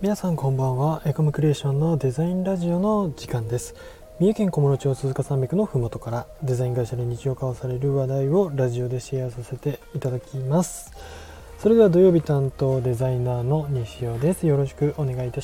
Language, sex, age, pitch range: Japanese, male, 20-39, 120-155 Hz